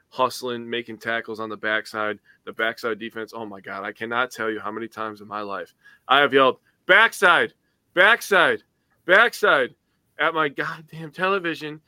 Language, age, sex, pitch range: English, 20-39, male, 115-155 Hz